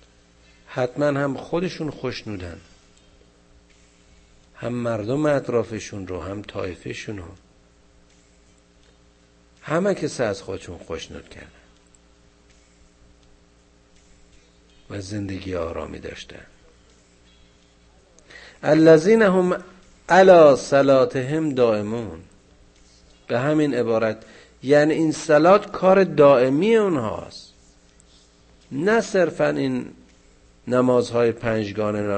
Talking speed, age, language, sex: 85 wpm, 50-69, Persian, male